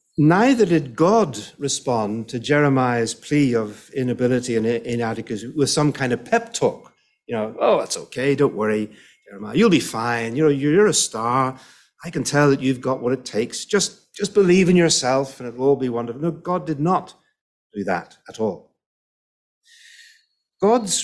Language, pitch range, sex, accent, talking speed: English, 120-175 Hz, male, British, 170 wpm